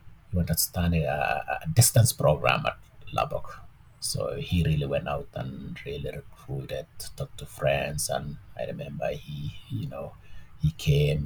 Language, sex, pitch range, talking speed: English, male, 80-125 Hz, 145 wpm